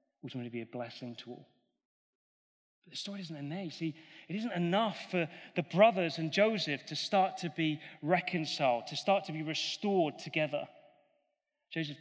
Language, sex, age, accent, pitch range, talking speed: English, male, 30-49, British, 145-190 Hz, 170 wpm